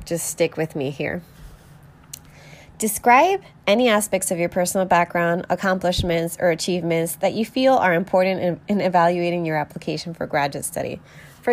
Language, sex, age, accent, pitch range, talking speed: English, female, 20-39, American, 160-195 Hz, 150 wpm